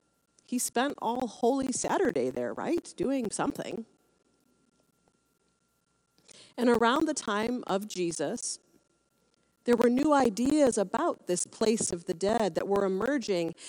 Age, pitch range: 40-59, 190-250 Hz